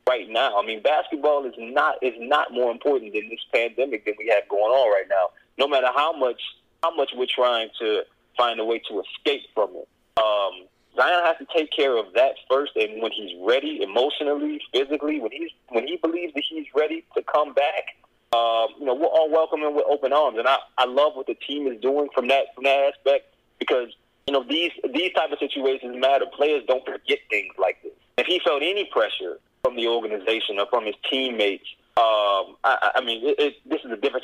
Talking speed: 215 wpm